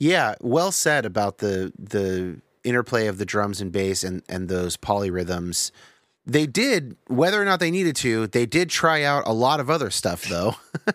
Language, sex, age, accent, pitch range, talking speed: English, male, 30-49, American, 105-150 Hz, 185 wpm